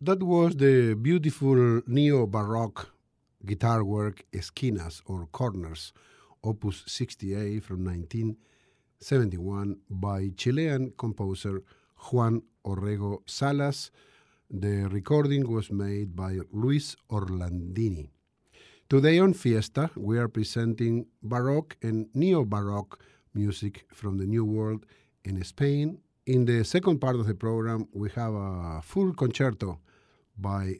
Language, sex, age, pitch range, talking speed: English, male, 50-69, 100-130 Hz, 110 wpm